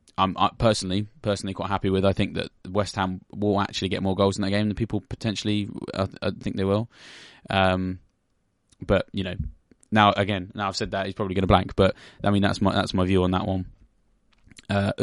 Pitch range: 95-110 Hz